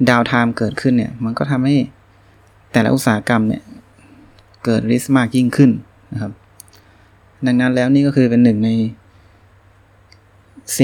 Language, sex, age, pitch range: Thai, male, 20-39, 100-130 Hz